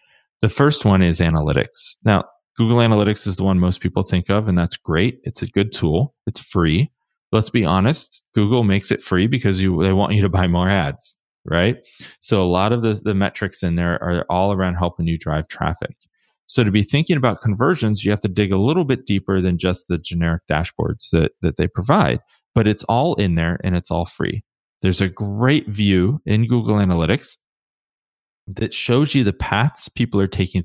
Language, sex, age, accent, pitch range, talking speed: English, male, 30-49, American, 90-115 Hz, 205 wpm